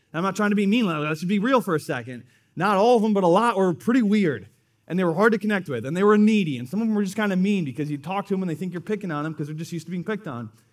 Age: 30-49